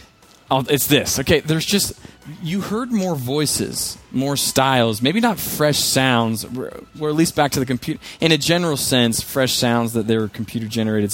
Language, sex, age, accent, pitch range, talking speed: English, male, 20-39, American, 115-140 Hz, 180 wpm